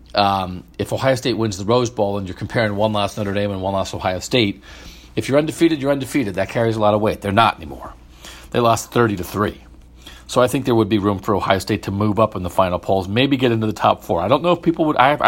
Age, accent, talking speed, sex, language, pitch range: 40-59, American, 275 wpm, male, English, 90-120 Hz